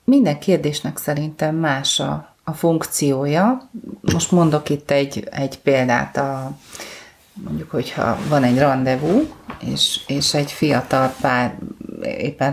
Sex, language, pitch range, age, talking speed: female, Hungarian, 145-185 Hz, 30-49, 120 wpm